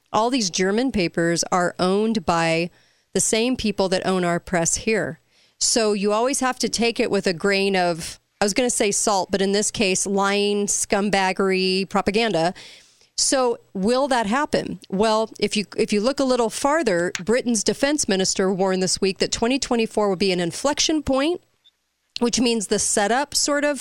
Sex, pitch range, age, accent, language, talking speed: female, 180-225 Hz, 40-59, American, English, 175 wpm